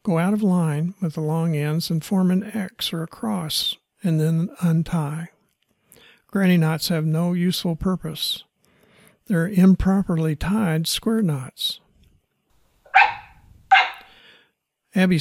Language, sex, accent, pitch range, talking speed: English, male, American, 155-190 Hz, 120 wpm